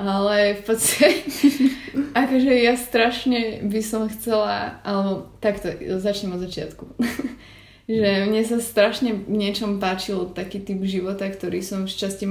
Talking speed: 130 wpm